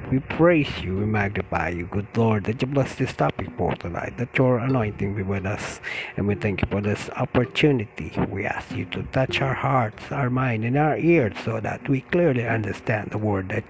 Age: 50-69